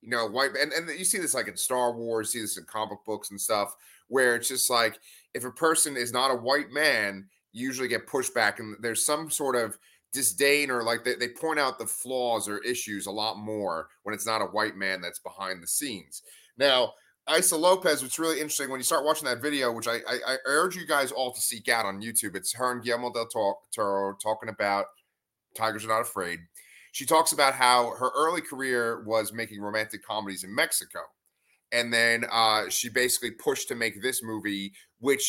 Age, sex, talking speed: 30-49, male, 215 wpm